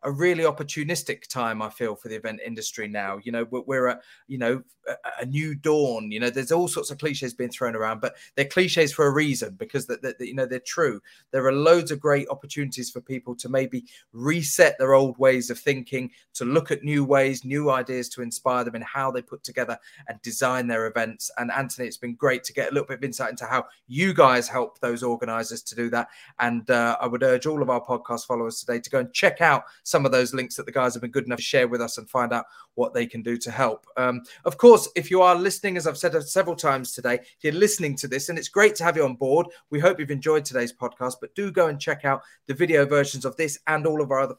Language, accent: English, British